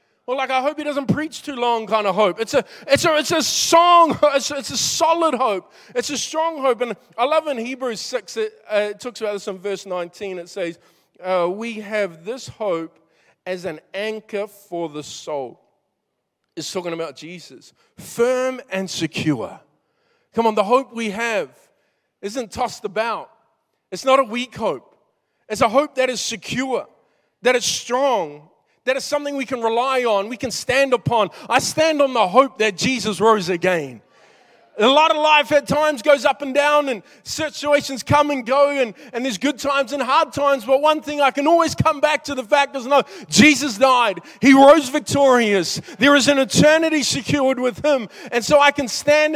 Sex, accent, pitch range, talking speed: male, Australian, 210-285 Hz, 195 wpm